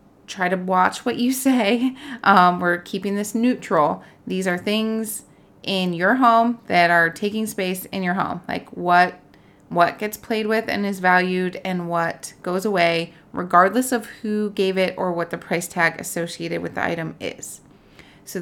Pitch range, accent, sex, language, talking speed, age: 175-210 Hz, American, female, English, 175 wpm, 30-49